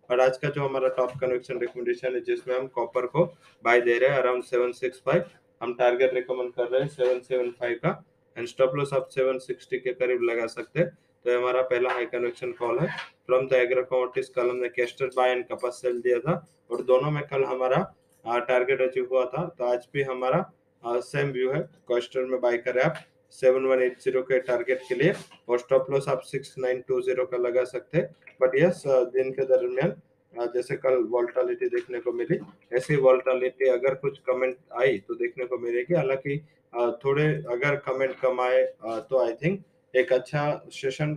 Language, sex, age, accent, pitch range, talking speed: English, male, 20-39, Indian, 125-145 Hz, 145 wpm